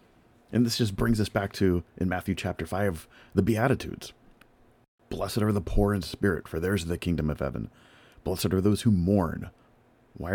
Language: English